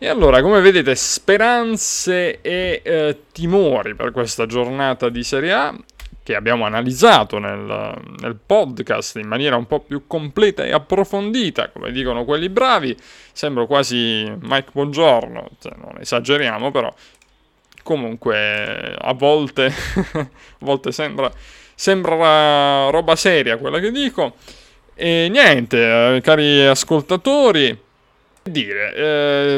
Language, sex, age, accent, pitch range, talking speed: Italian, male, 20-39, native, 125-185 Hz, 120 wpm